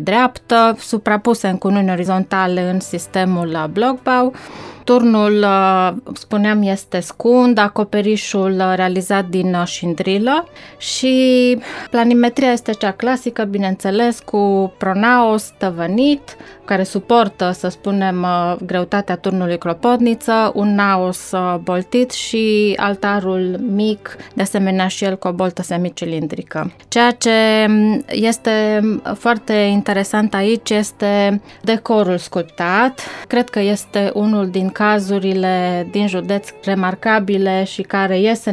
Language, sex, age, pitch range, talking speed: Romanian, female, 20-39, 190-225 Hz, 105 wpm